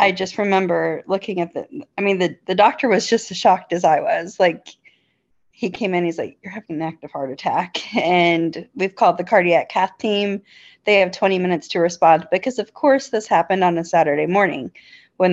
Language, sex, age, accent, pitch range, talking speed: English, female, 30-49, American, 170-205 Hz, 210 wpm